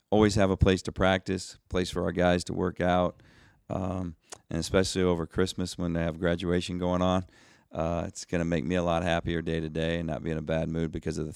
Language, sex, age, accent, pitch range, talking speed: English, male, 40-59, American, 85-95 Hz, 245 wpm